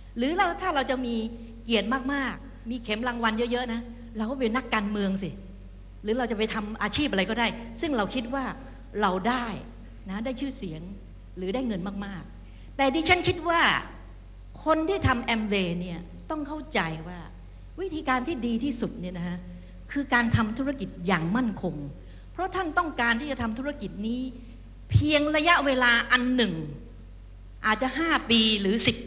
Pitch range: 185-255 Hz